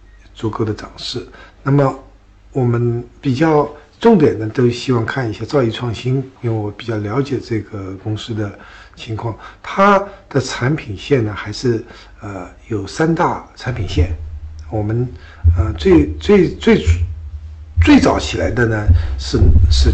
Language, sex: Chinese, male